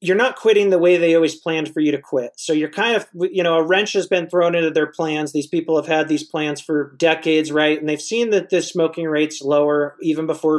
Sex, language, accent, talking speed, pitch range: male, English, American, 255 wpm, 160-195 Hz